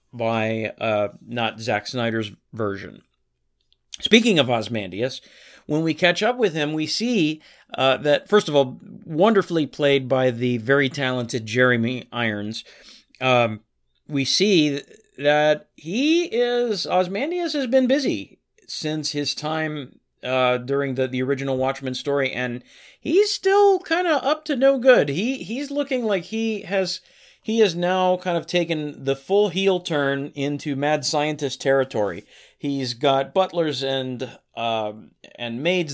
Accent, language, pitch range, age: American, English, 125-175 Hz, 40-59